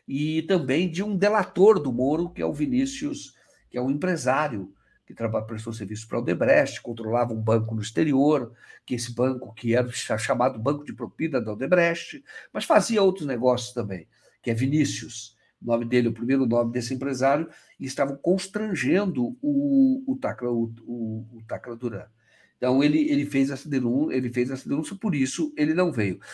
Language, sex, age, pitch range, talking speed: Portuguese, male, 60-79, 125-185 Hz, 165 wpm